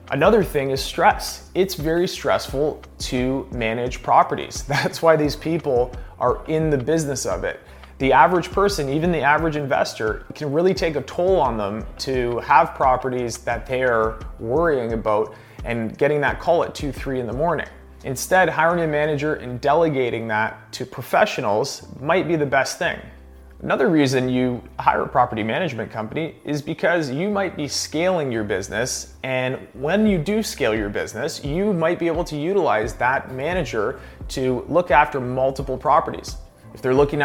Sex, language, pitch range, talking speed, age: male, English, 115-155 Hz, 170 wpm, 30-49